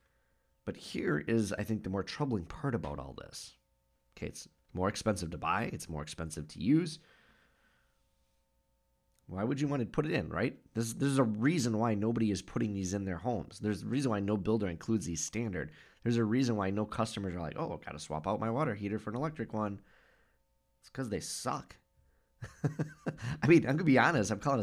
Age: 20-39